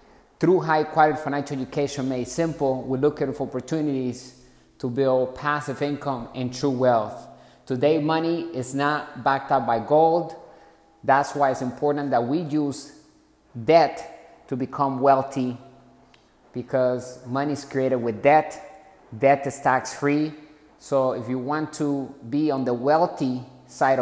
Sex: male